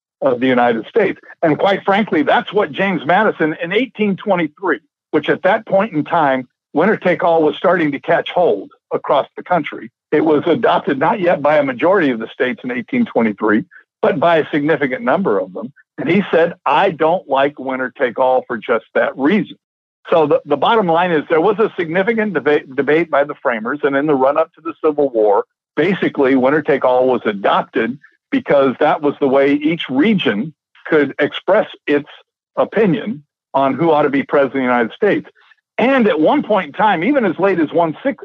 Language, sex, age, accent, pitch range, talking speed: English, male, 60-79, American, 140-200 Hz, 185 wpm